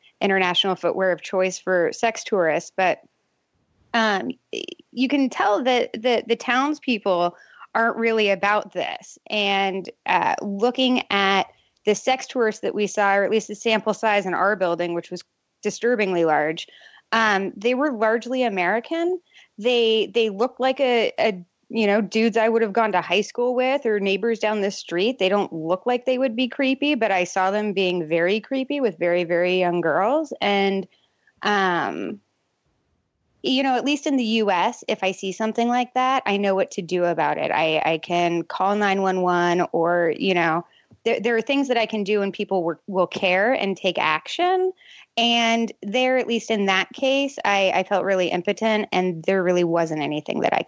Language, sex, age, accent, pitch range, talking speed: English, female, 20-39, American, 185-245 Hz, 180 wpm